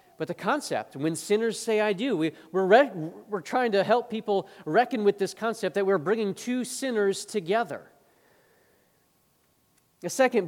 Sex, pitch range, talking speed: male, 140-210 Hz, 155 wpm